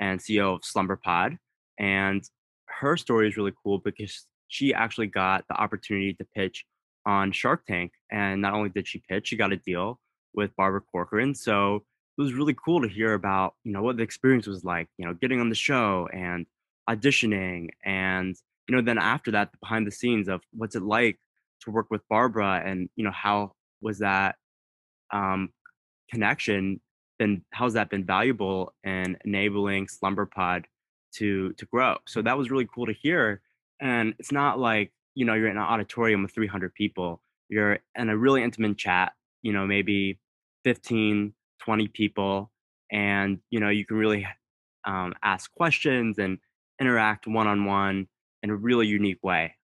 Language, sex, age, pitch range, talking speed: English, male, 20-39, 95-115 Hz, 175 wpm